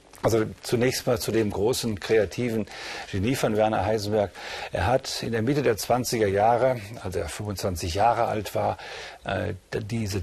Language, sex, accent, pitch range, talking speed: German, male, German, 100-120 Hz, 155 wpm